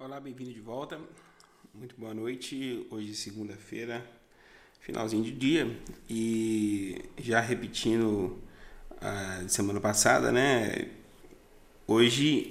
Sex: male